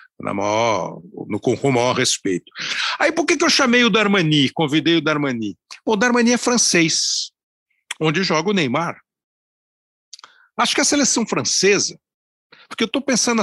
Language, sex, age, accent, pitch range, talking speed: Portuguese, male, 60-79, Brazilian, 145-235 Hz, 165 wpm